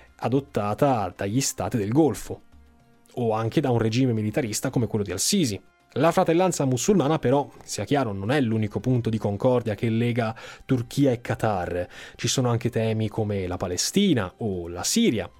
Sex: male